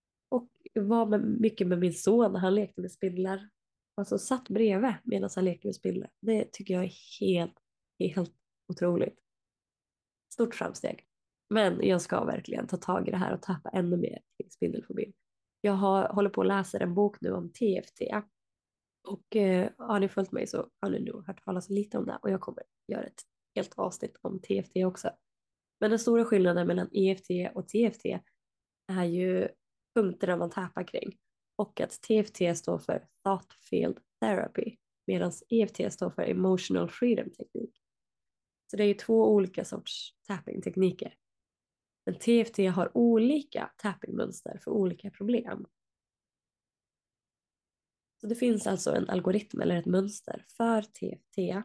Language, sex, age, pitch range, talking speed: Swedish, female, 20-39, 185-220 Hz, 155 wpm